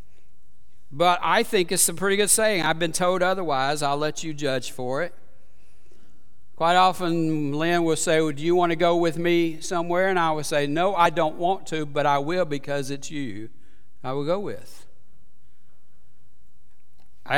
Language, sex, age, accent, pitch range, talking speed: English, male, 60-79, American, 135-205 Hz, 175 wpm